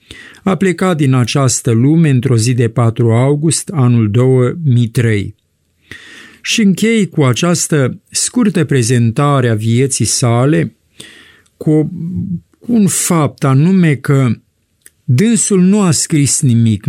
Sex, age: male, 50-69